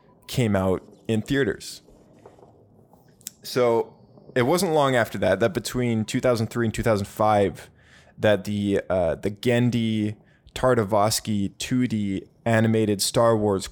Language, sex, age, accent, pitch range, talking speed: English, male, 20-39, American, 100-120 Hz, 110 wpm